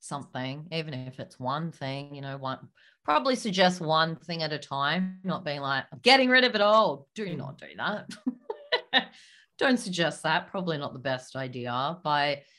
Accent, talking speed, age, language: Australian, 180 wpm, 30-49, English